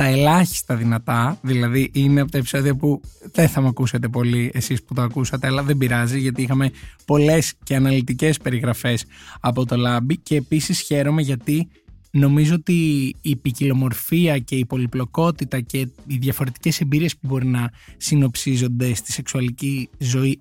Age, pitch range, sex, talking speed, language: 20-39, 125-155 Hz, male, 155 wpm, Greek